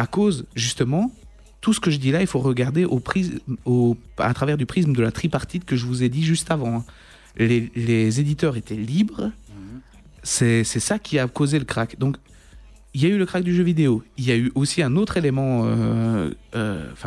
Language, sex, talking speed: French, male, 215 wpm